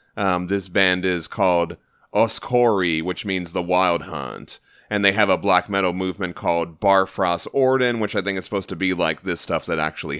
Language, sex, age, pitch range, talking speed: English, male, 30-49, 95-115 Hz, 195 wpm